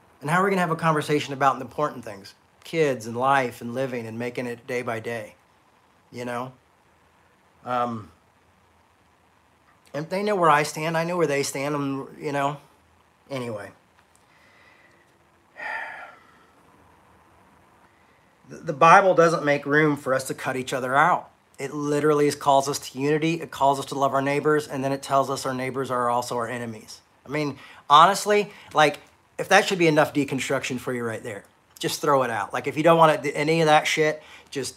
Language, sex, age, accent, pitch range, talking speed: English, male, 40-59, American, 130-160 Hz, 185 wpm